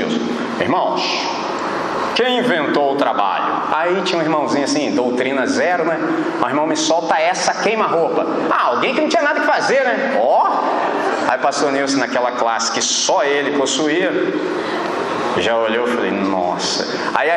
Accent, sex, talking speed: Brazilian, male, 160 wpm